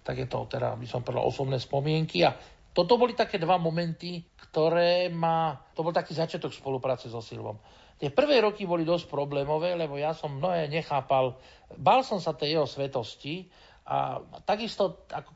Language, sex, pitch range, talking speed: Slovak, male, 130-170 Hz, 170 wpm